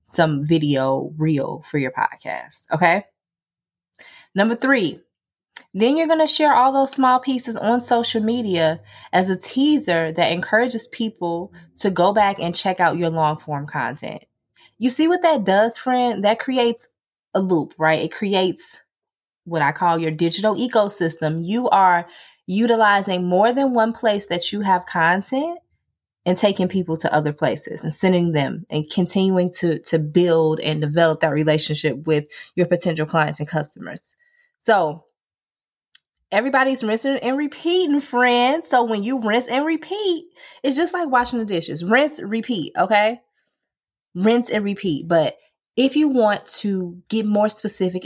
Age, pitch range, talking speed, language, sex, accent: 20-39, 165-240 Hz, 155 wpm, English, female, American